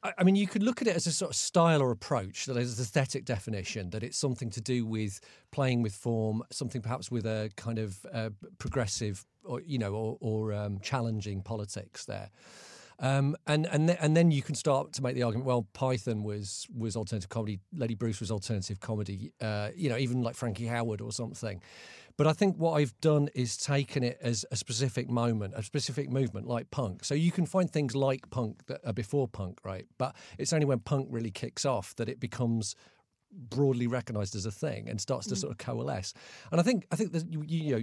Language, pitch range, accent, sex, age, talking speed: English, 110-135 Hz, British, male, 40-59, 225 wpm